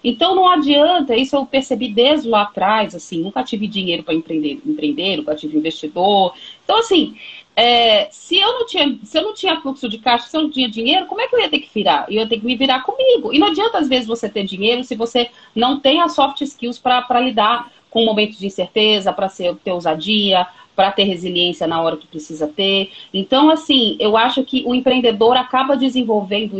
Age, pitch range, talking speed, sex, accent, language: 40-59, 205-295 Hz, 205 wpm, female, Brazilian, English